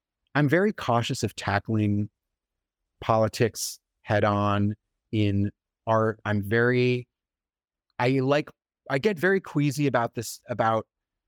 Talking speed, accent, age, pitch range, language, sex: 110 wpm, American, 30-49, 100-125 Hz, English, male